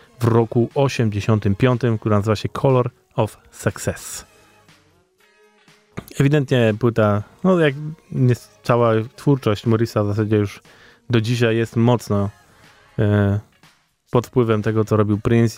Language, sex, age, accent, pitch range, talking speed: Polish, male, 20-39, native, 105-120 Hz, 120 wpm